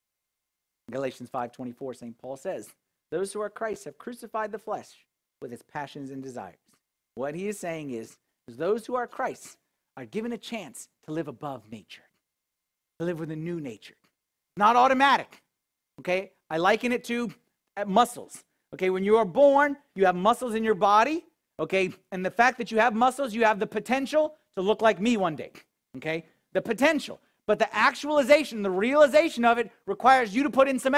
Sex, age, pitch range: male, 40-59, 165-260 Hz